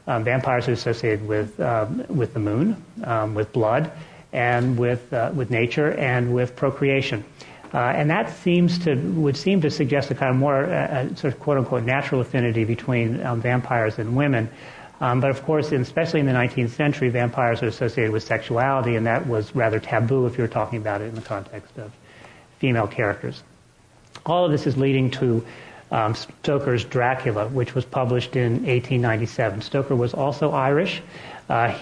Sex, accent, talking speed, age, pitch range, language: male, American, 180 wpm, 40-59, 115-140 Hz, English